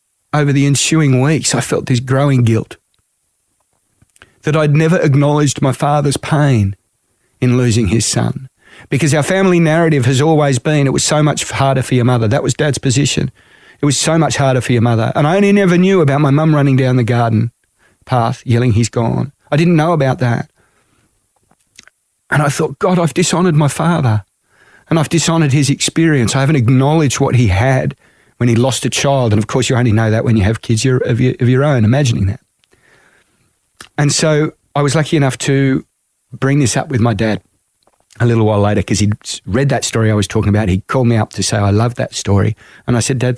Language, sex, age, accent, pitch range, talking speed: English, male, 40-59, Australian, 115-145 Hz, 210 wpm